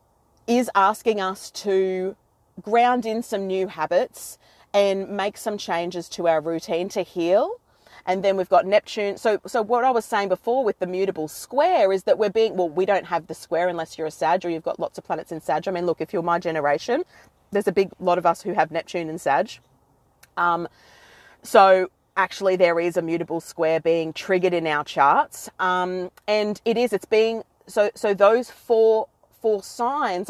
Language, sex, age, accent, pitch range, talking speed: English, female, 30-49, Australian, 170-205 Hz, 195 wpm